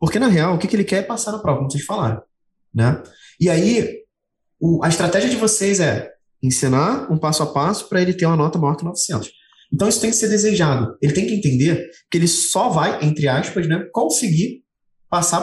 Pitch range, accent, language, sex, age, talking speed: 145-200 Hz, Brazilian, Portuguese, male, 20-39, 220 wpm